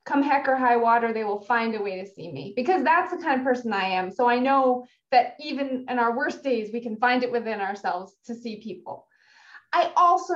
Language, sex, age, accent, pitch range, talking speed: English, female, 20-39, American, 210-260 Hz, 240 wpm